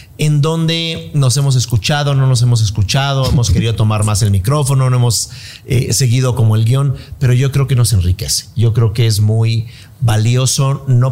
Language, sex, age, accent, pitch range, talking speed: Spanish, male, 40-59, Mexican, 105-130 Hz, 190 wpm